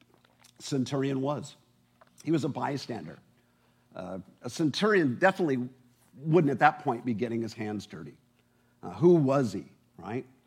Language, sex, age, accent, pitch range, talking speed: English, male, 50-69, American, 120-150 Hz, 140 wpm